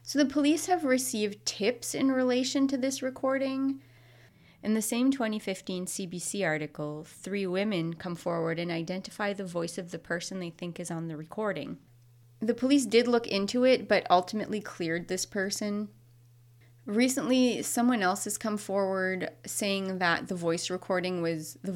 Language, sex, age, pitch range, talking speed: English, female, 30-49, 165-215 Hz, 160 wpm